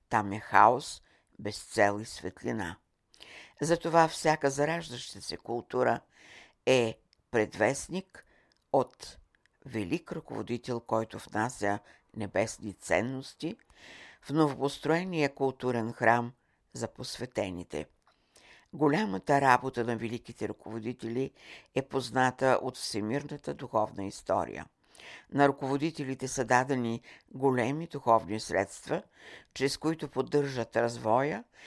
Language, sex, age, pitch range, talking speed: Bulgarian, female, 60-79, 110-140 Hz, 90 wpm